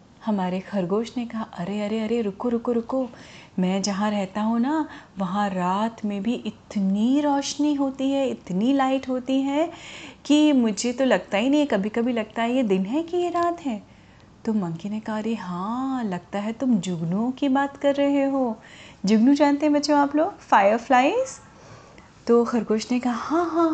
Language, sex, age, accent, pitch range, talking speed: Hindi, female, 30-49, native, 210-285 Hz, 180 wpm